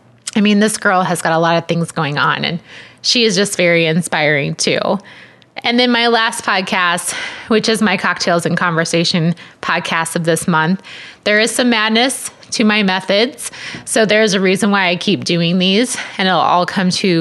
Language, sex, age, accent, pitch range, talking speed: English, female, 20-39, American, 165-210 Hz, 190 wpm